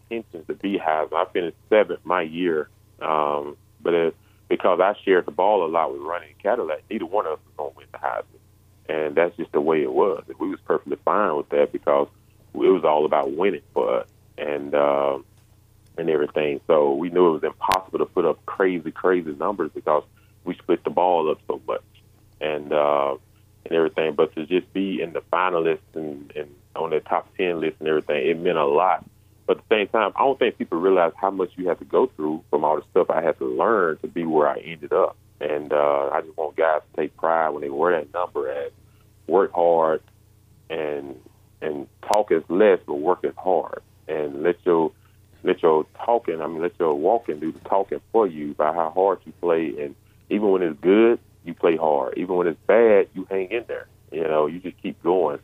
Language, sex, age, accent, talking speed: English, male, 30-49, American, 215 wpm